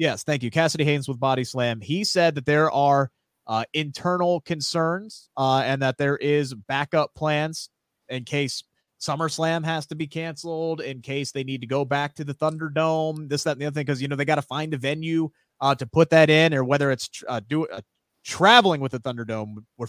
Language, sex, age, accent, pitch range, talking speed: English, male, 30-49, American, 125-160 Hz, 215 wpm